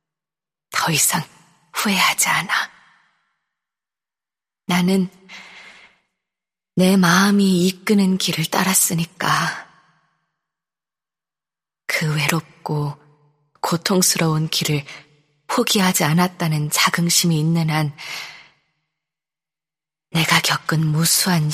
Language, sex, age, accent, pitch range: Korean, female, 20-39, native, 155-180 Hz